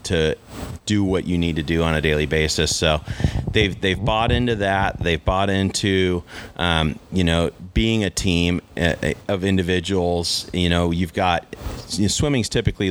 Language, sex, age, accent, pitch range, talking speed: English, male, 30-49, American, 85-105 Hz, 165 wpm